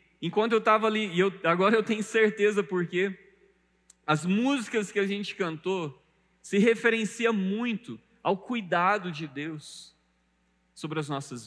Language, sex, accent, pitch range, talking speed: Portuguese, male, Brazilian, 140-220 Hz, 140 wpm